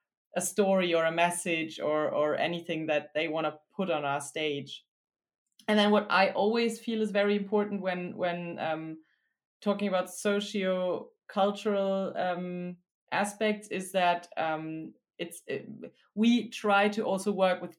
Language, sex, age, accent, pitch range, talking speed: German, female, 20-39, German, 165-195 Hz, 145 wpm